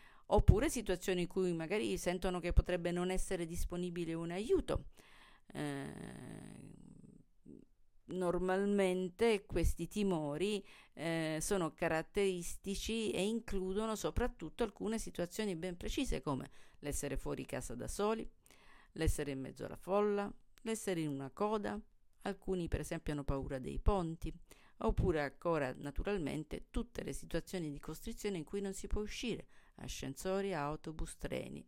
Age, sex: 50-69, female